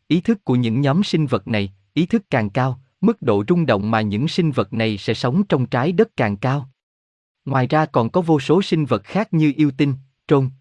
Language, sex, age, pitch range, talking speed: Vietnamese, male, 20-39, 110-155 Hz, 230 wpm